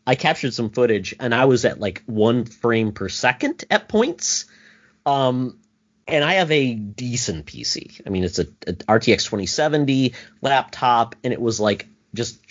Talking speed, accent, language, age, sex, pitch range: 170 wpm, American, English, 30-49, male, 110-140 Hz